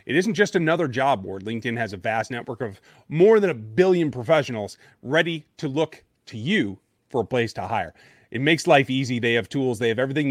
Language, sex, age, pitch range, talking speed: English, male, 30-49, 115-160 Hz, 215 wpm